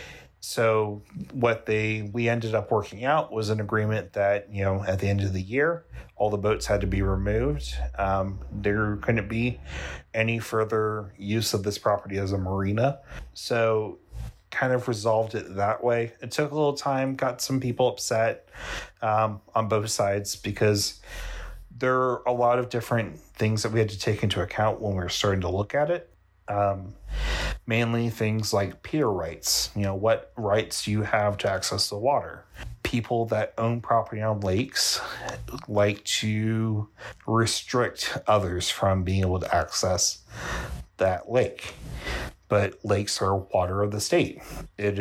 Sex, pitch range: male, 100-115 Hz